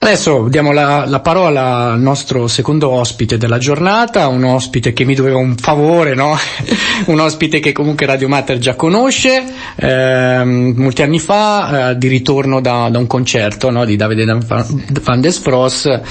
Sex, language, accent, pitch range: male, Italian, native, 125-160 Hz